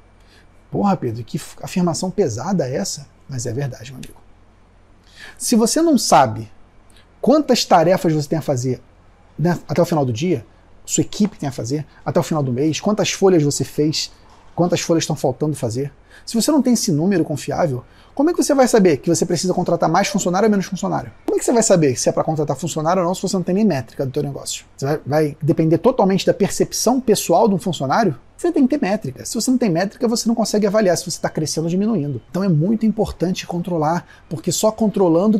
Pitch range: 135-195 Hz